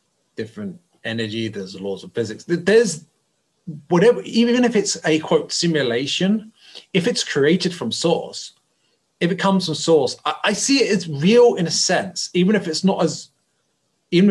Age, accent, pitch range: 30-49, British, 140-190 Hz